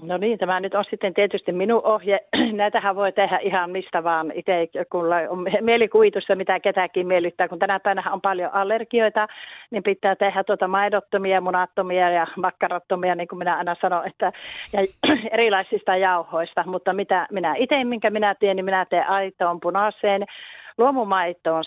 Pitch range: 175-210 Hz